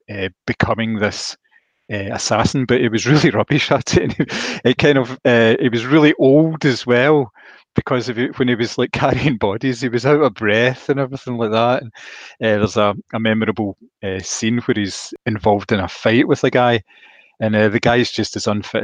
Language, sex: English, male